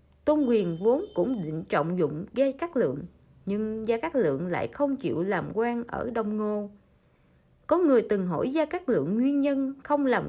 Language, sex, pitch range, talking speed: Vietnamese, female, 200-280 Hz, 190 wpm